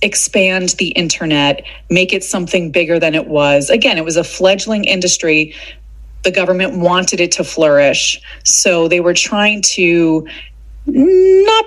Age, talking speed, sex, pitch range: 30-49, 145 wpm, female, 165-235 Hz